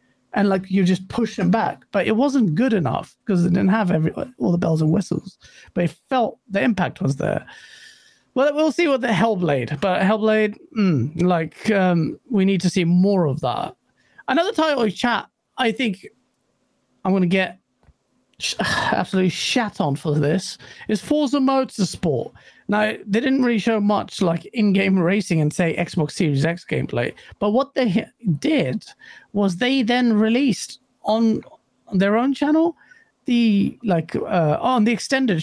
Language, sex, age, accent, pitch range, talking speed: English, male, 40-59, British, 175-250 Hz, 170 wpm